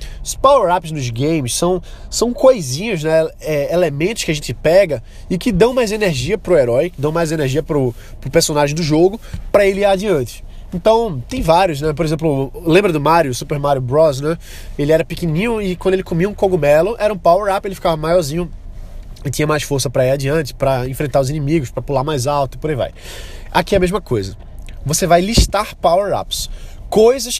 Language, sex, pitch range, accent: Portuguese, male, 135-185 Hz, Brazilian